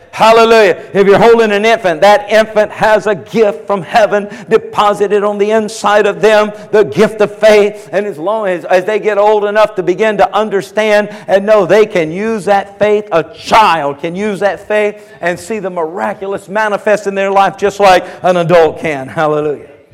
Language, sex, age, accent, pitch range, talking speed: English, male, 50-69, American, 165-210 Hz, 190 wpm